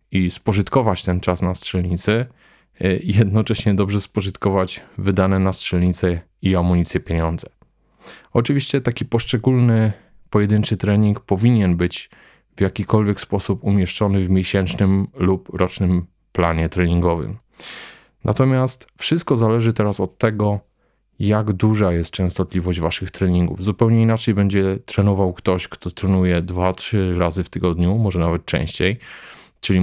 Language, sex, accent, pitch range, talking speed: Polish, male, native, 90-105 Hz, 120 wpm